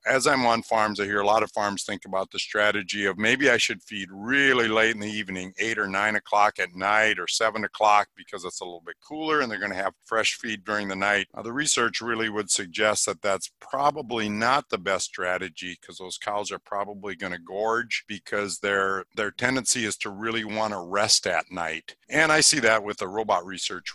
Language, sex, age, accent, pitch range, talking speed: English, male, 50-69, American, 100-115 Hz, 225 wpm